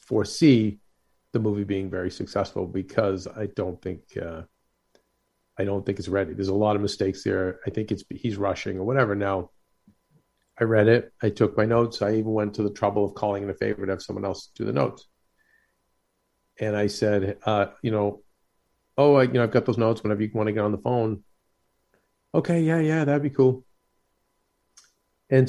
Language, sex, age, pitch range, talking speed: English, male, 50-69, 100-120 Hz, 200 wpm